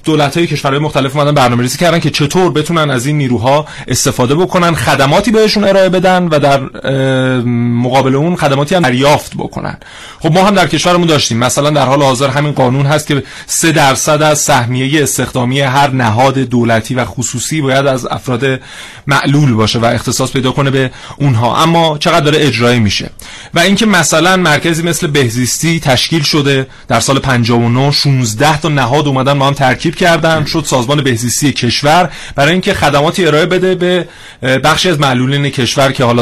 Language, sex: Persian, male